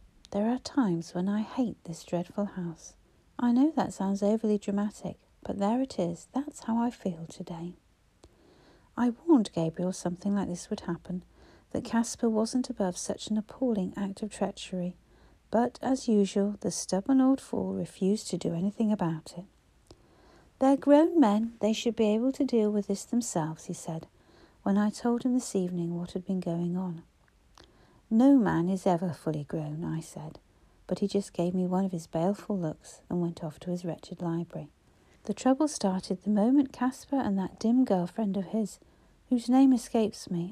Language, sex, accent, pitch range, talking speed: English, female, British, 175-225 Hz, 180 wpm